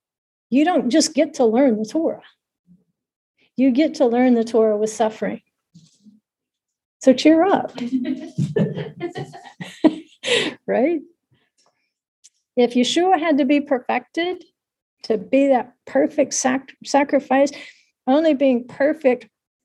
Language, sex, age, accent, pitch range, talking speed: English, female, 50-69, American, 230-290 Hz, 105 wpm